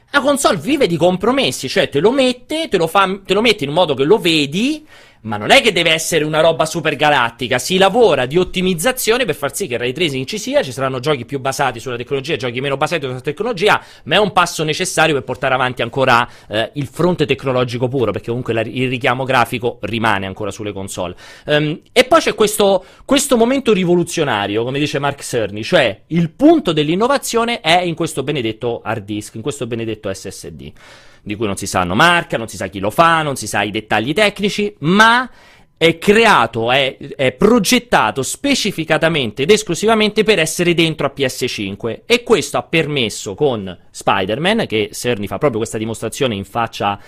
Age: 30-49